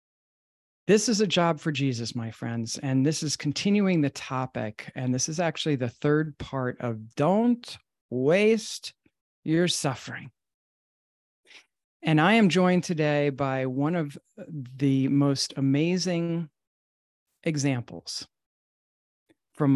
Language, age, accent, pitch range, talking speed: English, 40-59, American, 125-155 Hz, 120 wpm